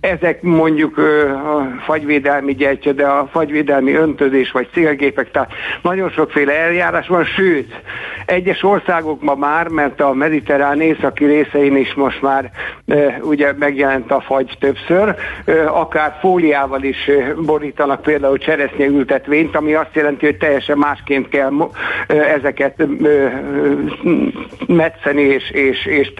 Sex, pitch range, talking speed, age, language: male, 140-160 Hz, 130 wpm, 60-79, Hungarian